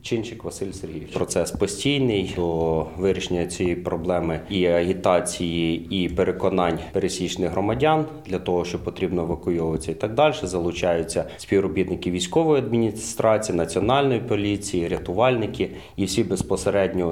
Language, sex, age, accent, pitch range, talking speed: Ukrainian, male, 30-49, native, 90-115 Hz, 115 wpm